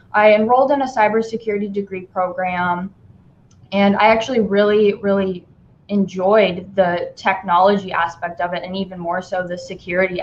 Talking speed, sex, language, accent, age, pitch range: 140 wpm, female, English, American, 10-29, 180-220 Hz